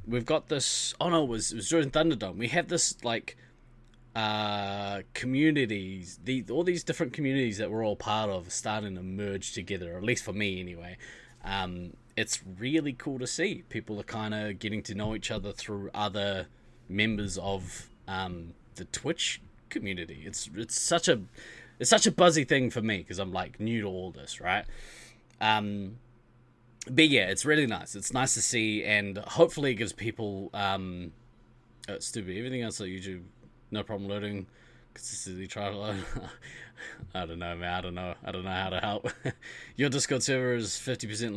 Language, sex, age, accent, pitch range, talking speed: English, male, 20-39, Australian, 100-120 Hz, 180 wpm